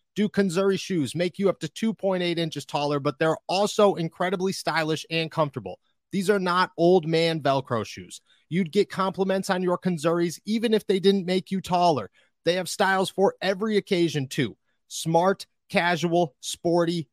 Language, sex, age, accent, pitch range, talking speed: English, male, 30-49, American, 165-200 Hz, 165 wpm